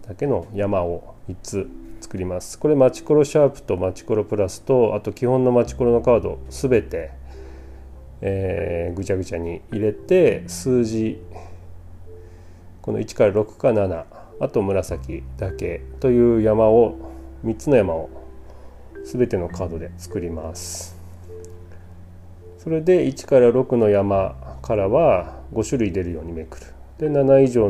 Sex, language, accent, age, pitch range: male, Japanese, native, 40-59, 85-120 Hz